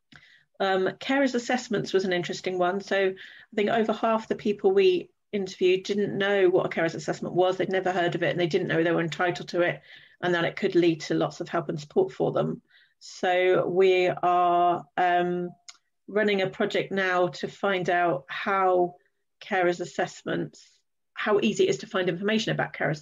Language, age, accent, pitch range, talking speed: English, 40-59, British, 175-200 Hz, 190 wpm